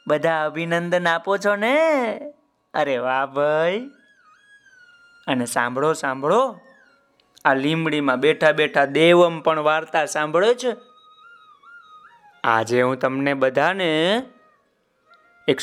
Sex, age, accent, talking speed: male, 20-39, native, 40 wpm